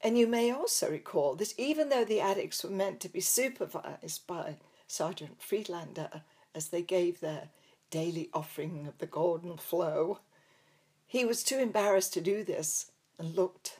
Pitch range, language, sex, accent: 170-215 Hz, English, female, British